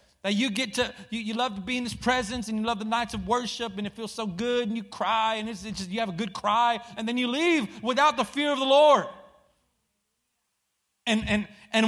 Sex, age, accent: male, 30-49, American